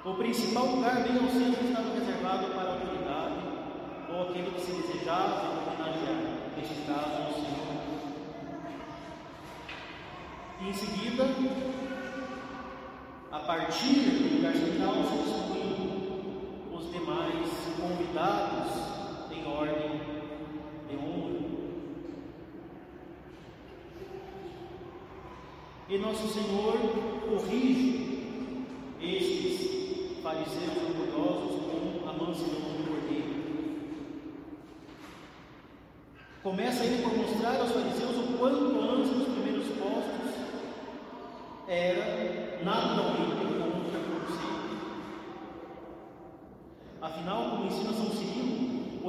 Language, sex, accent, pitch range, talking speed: Portuguese, male, Brazilian, 175-255 Hz, 85 wpm